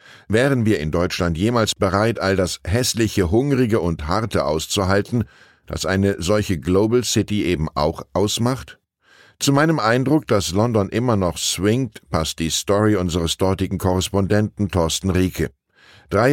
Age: 10-29